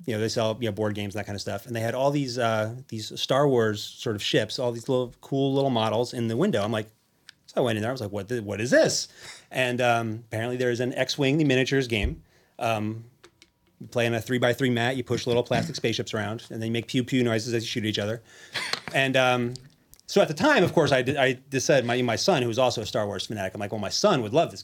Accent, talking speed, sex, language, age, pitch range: American, 280 wpm, male, English, 30-49, 110-135 Hz